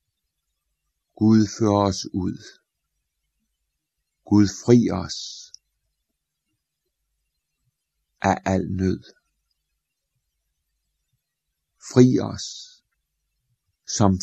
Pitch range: 75-105 Hz